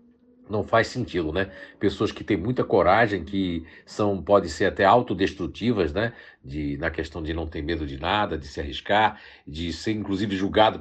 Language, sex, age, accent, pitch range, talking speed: Portuguese, male, 60-79, Brazilian, 90-125 Hz, 180 wpm